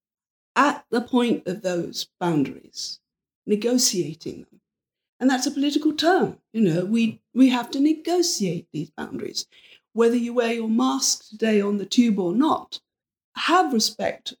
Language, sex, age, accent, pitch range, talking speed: English, female, 50-69, British, 200-285 Hz, 145 wpm